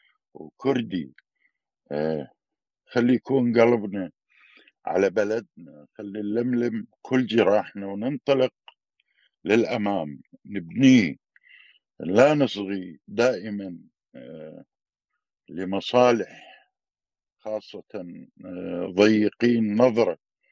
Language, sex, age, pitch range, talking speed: Arabic, male, 50-69, 90-115 Hz, 60 wpm